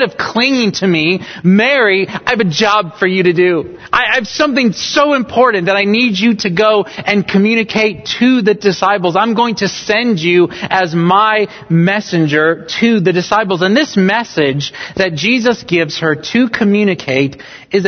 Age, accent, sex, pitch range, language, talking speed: 30-49, American, male, 165-225 Hz, English, 170 wpm